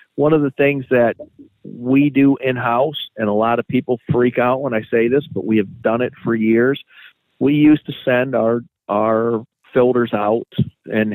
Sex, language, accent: male, English, American